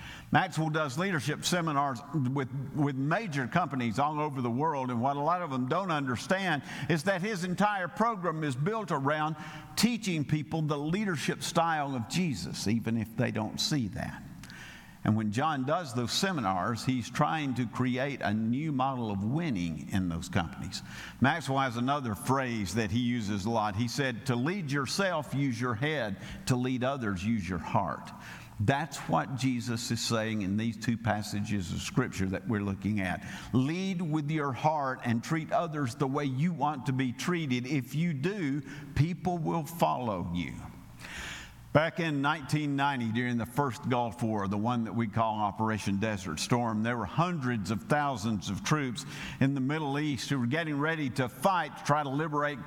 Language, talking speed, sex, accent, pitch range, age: English, 175 wpm, male, American, 120-155 Hz, 50-69